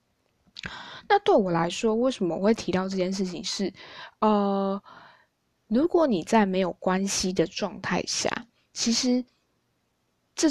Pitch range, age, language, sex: 190-240 Hz, 20-39, Chinese, female